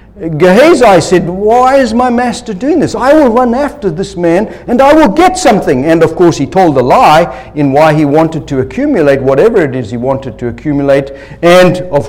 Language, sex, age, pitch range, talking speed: English, male, 60-79, 115-170 Hz, 205 wpm